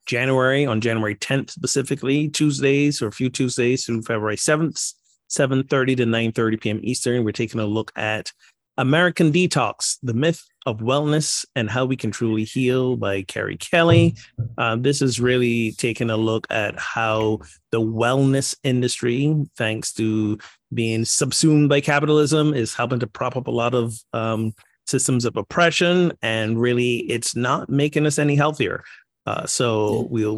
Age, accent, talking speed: 30-49, American, 155 wpm